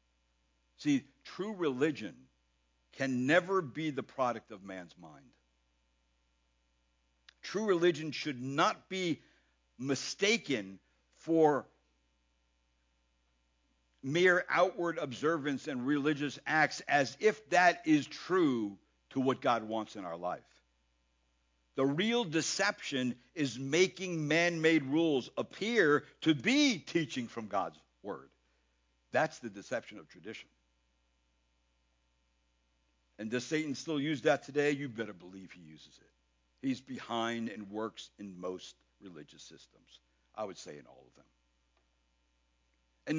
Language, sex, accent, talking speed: English, male, American, 115 wpm